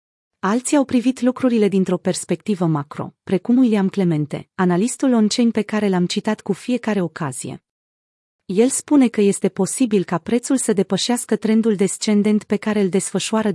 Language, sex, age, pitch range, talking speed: Romanian, female, 30-49, 180-225 Hz, 150 wpm